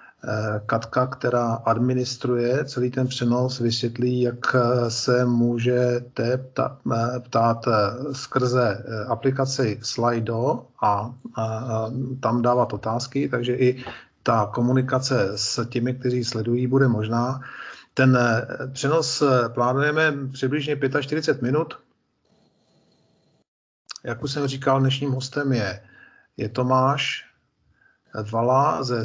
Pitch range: 115-135 Hz